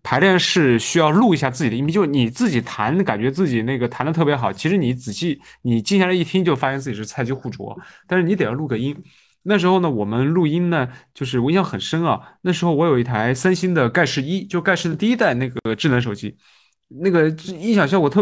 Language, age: Chinese, 20-39